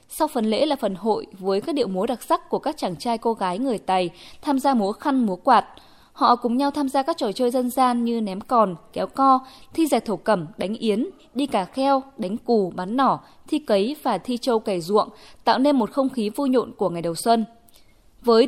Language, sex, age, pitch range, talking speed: Vietnamese, female, 20-39, 205-270 Hz, 235 wpm